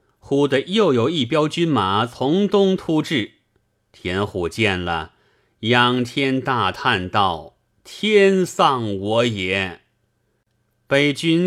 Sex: male